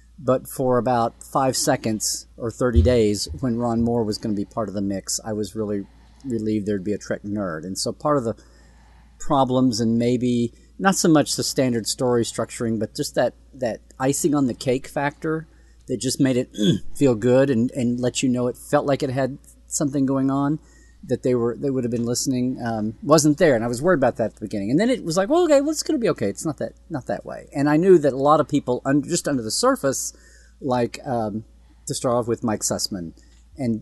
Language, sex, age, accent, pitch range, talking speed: English, male, 40-59, American, 105-135 Hz, 235 wpm